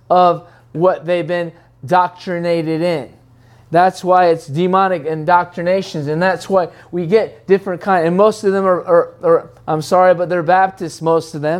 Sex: male